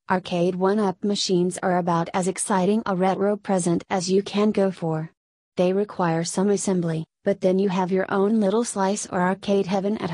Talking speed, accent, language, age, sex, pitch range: 185 wpm, American, English, 30-49, female, 175-200 Hz